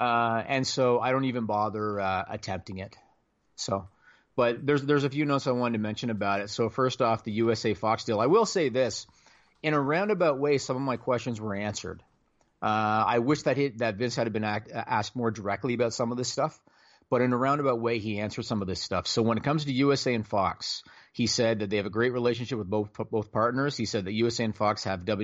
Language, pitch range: English, 105-130 Hz